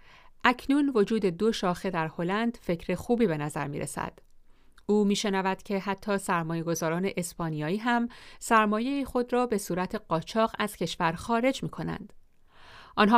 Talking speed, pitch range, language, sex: 140 wpm, 165-220 Hz, Persian, female